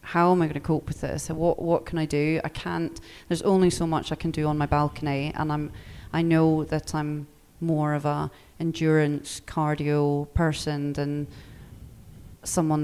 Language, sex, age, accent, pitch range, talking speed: English, female, 30-49, British, 150-170 Hz, 180 wpm